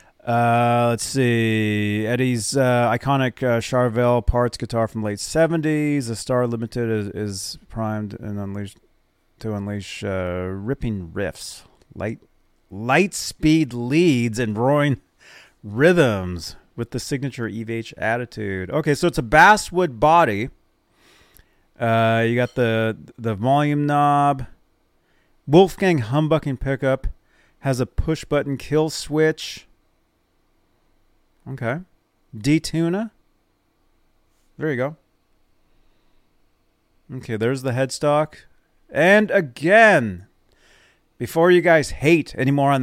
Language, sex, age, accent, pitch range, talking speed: English, male, 30-49, American, 115-155 Hz, 110 wpm